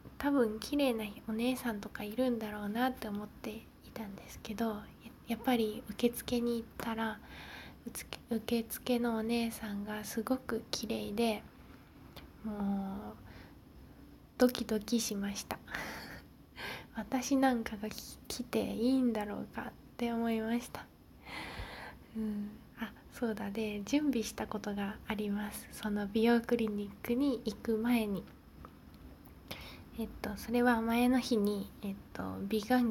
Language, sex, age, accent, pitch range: Japanese, female, 20-39, native, 210-240 Hz